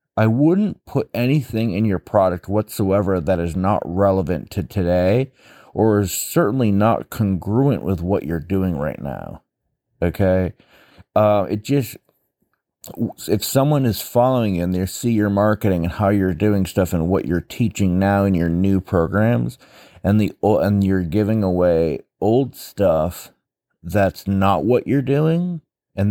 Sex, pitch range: male, 95-120 Hz